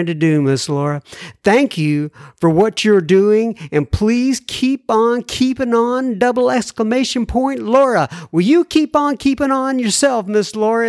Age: 50-69